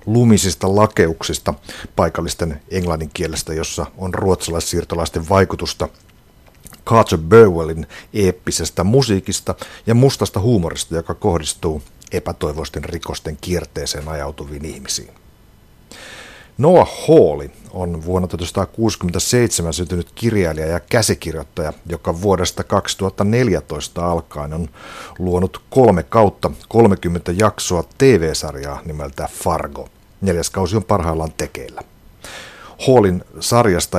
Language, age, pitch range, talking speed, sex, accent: Finnish, 60-79, 80-100 Hz, 90 wpm, male, native